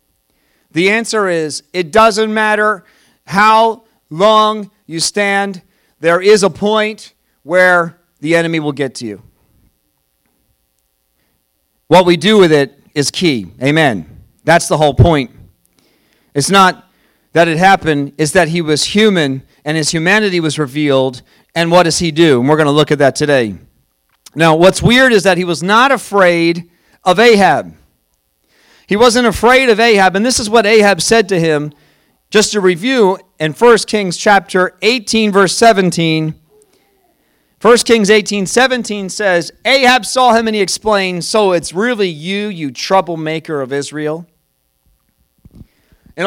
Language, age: English, 40-59